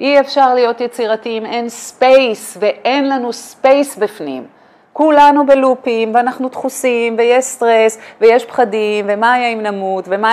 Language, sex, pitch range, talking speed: Hebrew, female, 220-290 Hz, 135 wpm